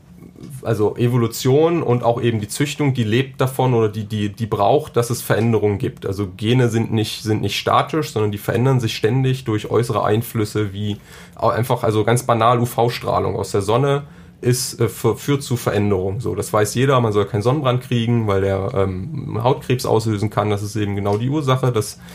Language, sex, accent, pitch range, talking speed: German, male, German, 105-125 Hz, 185 wpm